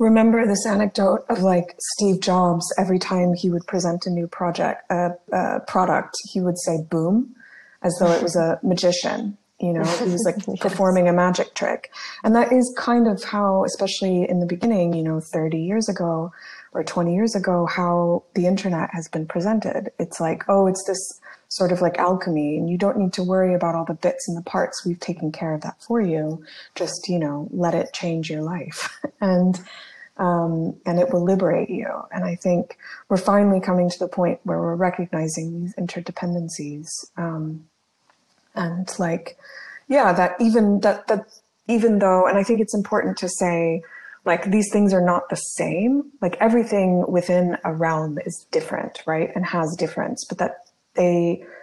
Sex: female